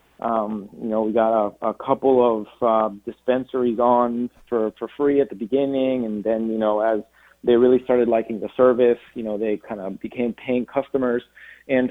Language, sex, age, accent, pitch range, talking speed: English, male, 30-49, American, 115-135 Hz, 190 wpm